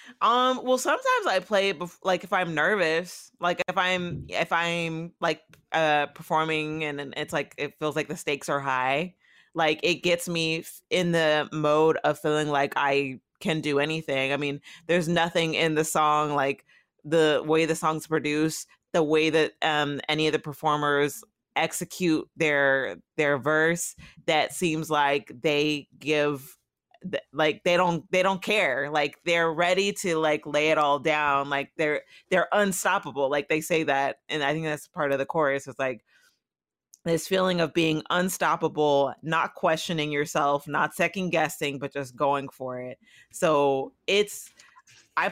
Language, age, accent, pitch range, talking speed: English, 20-39, American, 145-175 Hz, 165 wpm